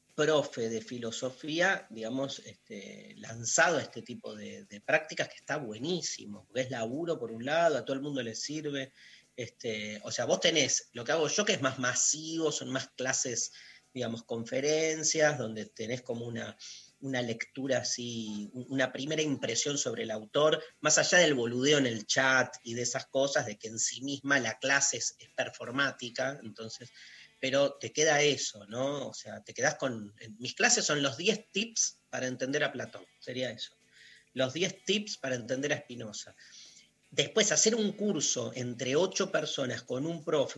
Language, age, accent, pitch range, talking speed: Spanish, 30-49, Argentinian, 115-155 Hz, 175 wpm